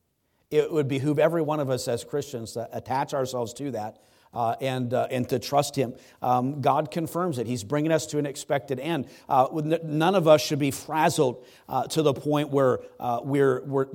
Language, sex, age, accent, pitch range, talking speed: English, male, 40-59, American, 130-160 Hz, 200 wpm